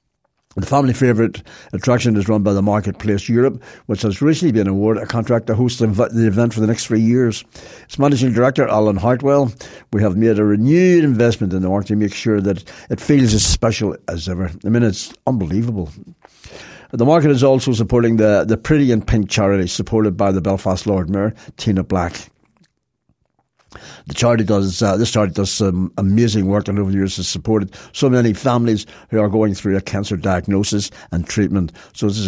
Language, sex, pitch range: English, male, 95-120 Hz